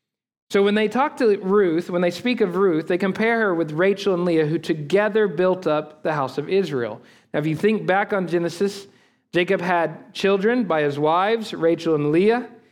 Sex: male